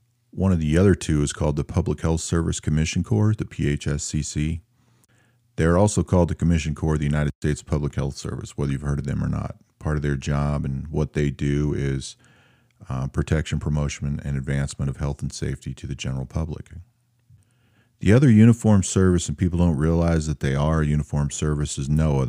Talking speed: 200 wpm